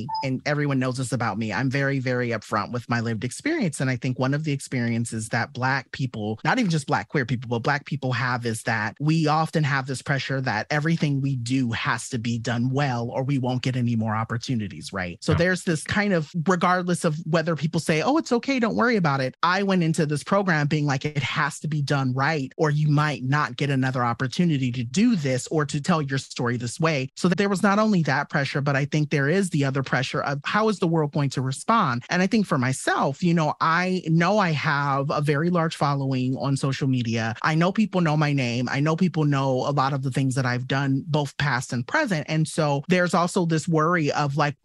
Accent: American